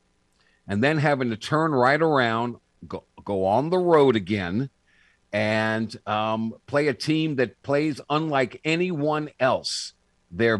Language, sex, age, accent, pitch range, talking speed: English, male, 50-69, American, 105-145 Hz, 135 wpm